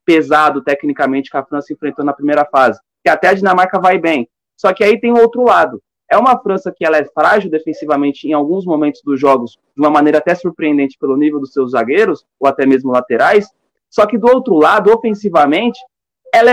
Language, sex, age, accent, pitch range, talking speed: Portuguese, male, 20-39, Brazilian, 145-210 Hz, 205 wpm